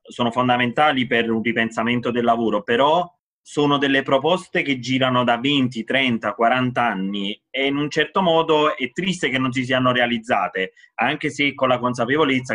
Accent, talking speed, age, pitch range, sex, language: native, 165 wpm, 30-49, 120-150 Hz, male, Italian